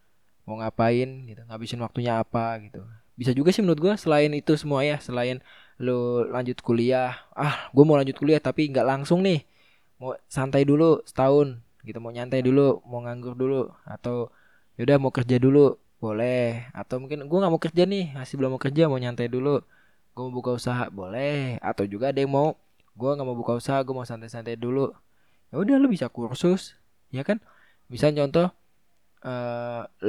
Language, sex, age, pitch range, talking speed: Indonesian, male, 20-39, 110-135 Hz, 175 wpm